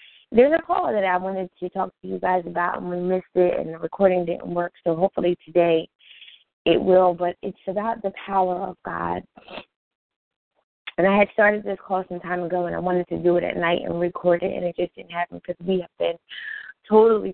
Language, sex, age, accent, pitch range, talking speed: English, female, 20-39, American, 165-185 Hz, 220 wpm